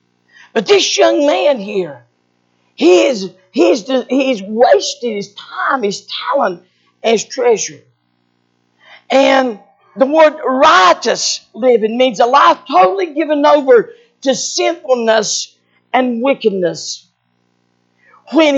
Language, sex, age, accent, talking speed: English, female, 50-69, American, 115 wpm